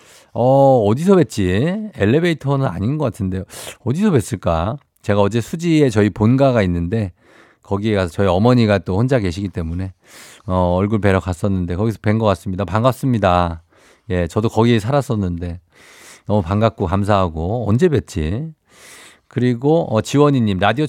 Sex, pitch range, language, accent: male, 100-145 Hz, Korean, native